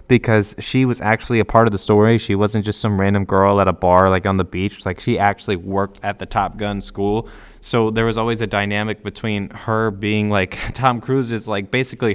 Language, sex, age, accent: English, male, 20-39, American